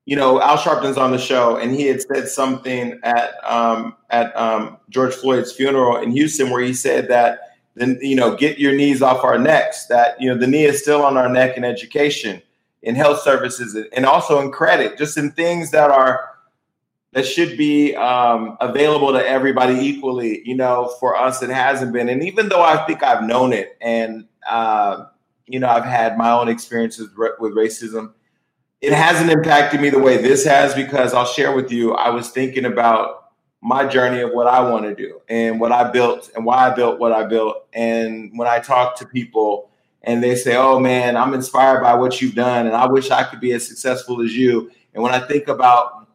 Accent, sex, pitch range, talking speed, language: American, male, 120-140 Hz, 210 wpm, English